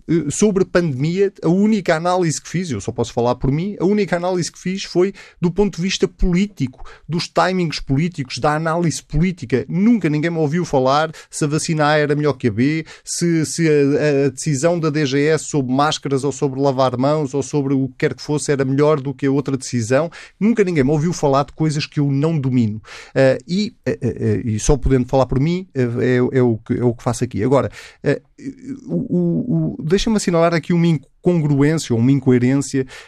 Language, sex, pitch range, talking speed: Portuguese, male, 125-170 Hz, 220 wpm